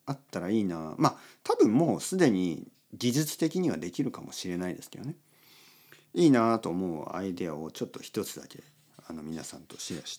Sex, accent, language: male, native, Japanese